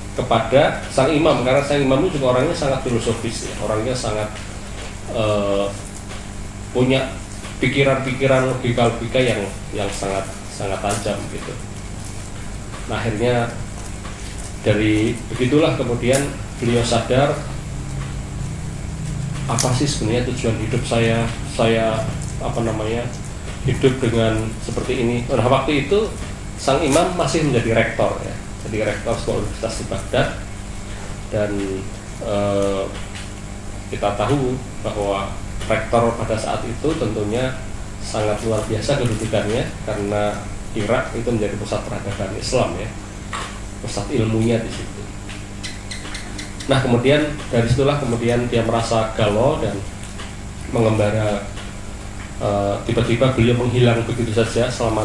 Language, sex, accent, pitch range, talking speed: Indonesian, male, native, 100-120 Hz, 110 wpm